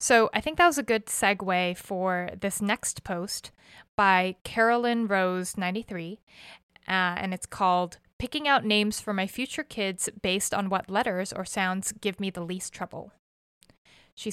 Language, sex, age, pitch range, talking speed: English, female, 20-39, 190-225 Hz, 160 wpm